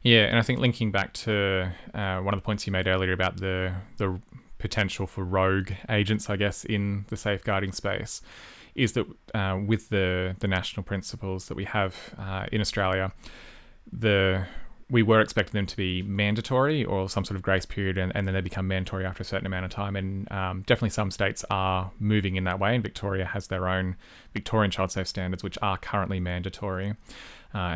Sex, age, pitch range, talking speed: male, 20-39, 95-100 Hz, 200 wpm